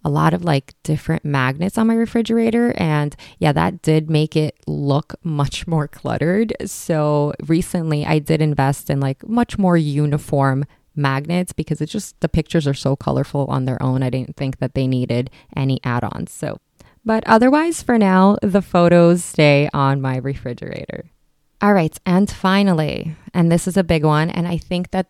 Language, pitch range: English, 140-185 Hz